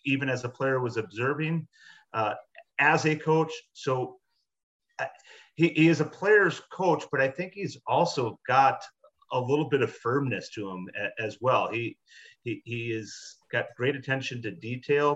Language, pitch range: English, 115-135 Hz